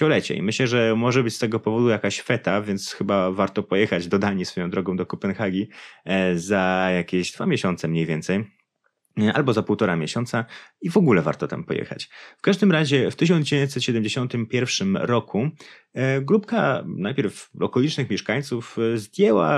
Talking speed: 145 wpm